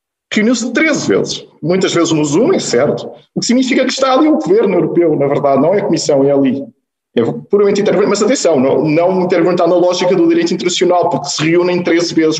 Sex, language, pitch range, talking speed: male, Portuguese, 140-200 Hz, 210 wpm